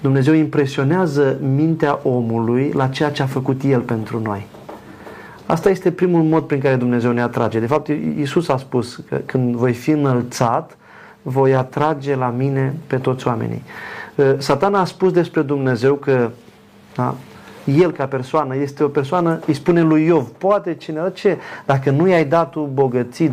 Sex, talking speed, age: male, 165 wpm, 30-49